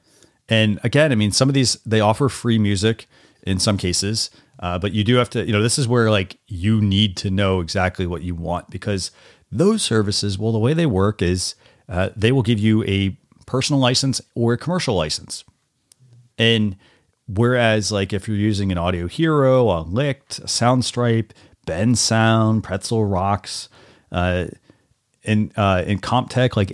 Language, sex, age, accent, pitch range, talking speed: English, male, 30-49, American, 95-115 Hz, 175 wpm